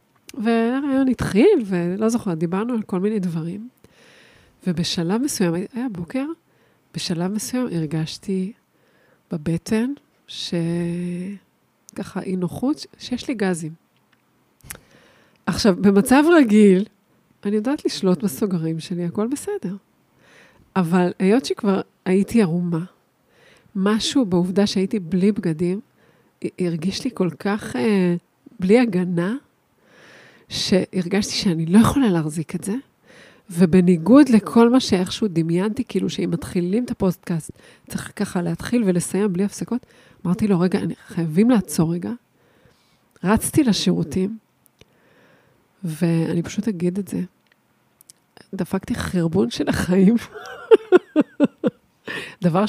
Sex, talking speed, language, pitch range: female, 100 wpm, Hebrew, 180-225 Hz